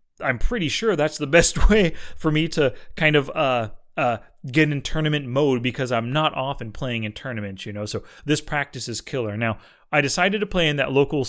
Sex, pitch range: male, 120-165 Hz